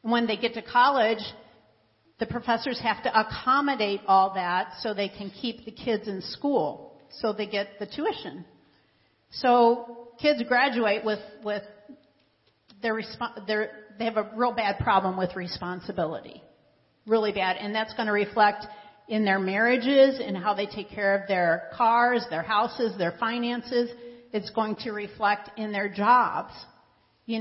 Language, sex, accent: English, female, American